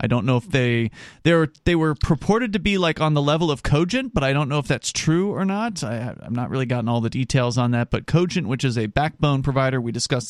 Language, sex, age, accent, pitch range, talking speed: English, male, 30-49, American, 110-145 Hz, 270 wpm